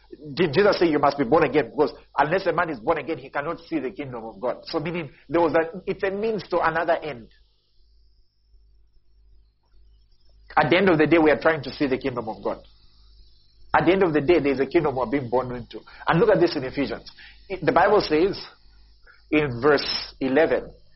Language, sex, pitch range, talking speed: English, male, 130-180 Hz, 215 wpm